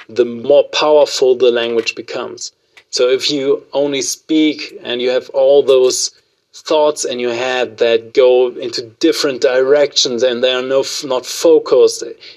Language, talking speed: English, 155 wpm